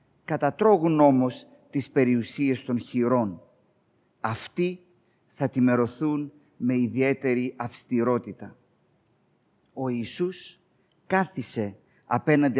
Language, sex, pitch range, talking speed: Greek, male, 120-155 Hz, 75 wpm